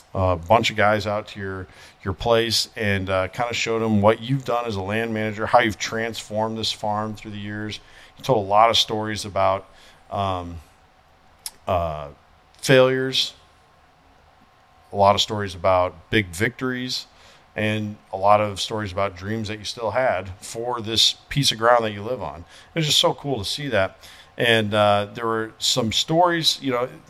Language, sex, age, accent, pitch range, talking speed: English, male, 40-59, American, 95-115 Hz, 185 wpm